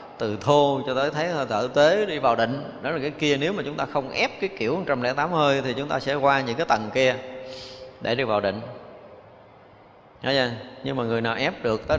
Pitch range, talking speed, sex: 105-135 Hz, 230 wpm, male